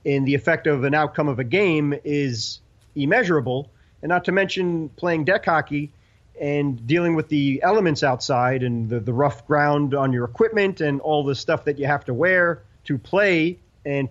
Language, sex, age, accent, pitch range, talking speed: English, male, 30-49, American, 140-170 Hz, 185 wpm